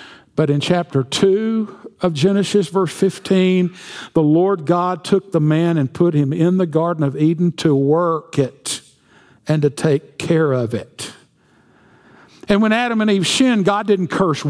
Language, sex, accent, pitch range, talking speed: English, male, American, 160-215 Hz, 165 wpm